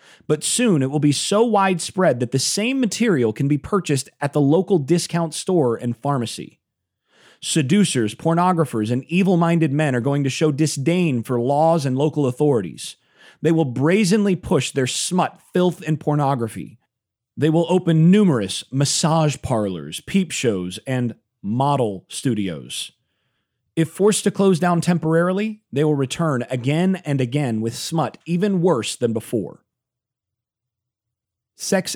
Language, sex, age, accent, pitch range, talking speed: English, male, 30-49, American, 125-175 Hz, 140 wpm